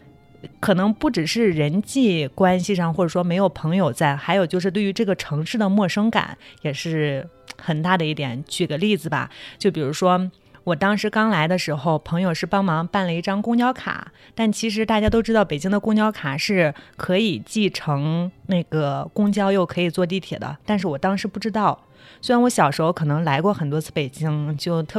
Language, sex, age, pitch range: Chinese, female, 20-39, 155-200 Hz